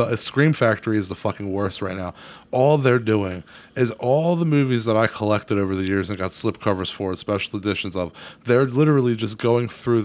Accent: American